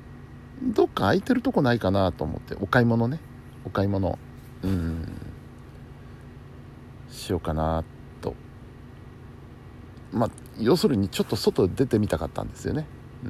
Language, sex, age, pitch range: Japanese, male, 60-79, 90-135 Hz